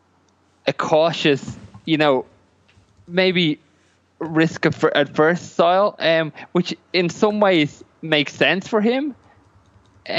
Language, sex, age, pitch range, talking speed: English, male, 20-39, 130-165 Hz, 120 wpm